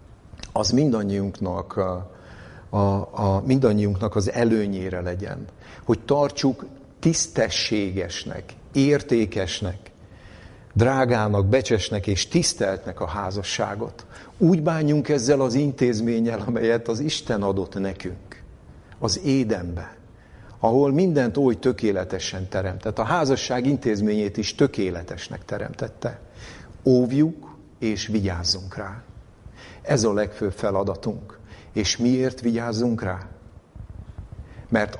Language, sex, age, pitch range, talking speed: Hungarian, male, 60-79, 95-120 Hz, 90 wpm